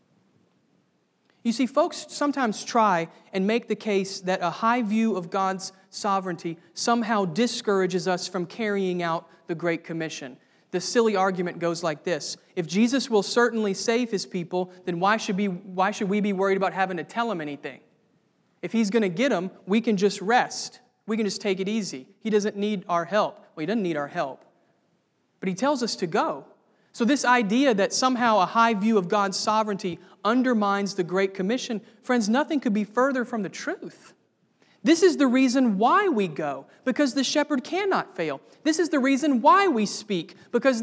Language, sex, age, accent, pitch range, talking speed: English, male, 30-49, American, 190-265 Hz, 185 wpm